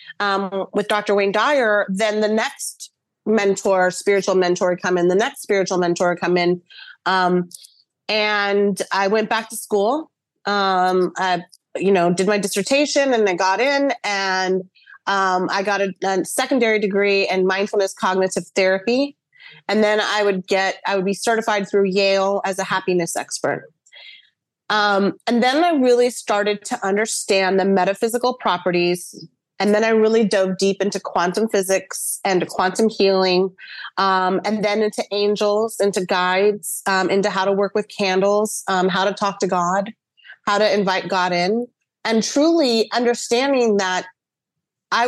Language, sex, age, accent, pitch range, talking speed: English, female, 30-49, American, 185-215 Hz, 155 wpm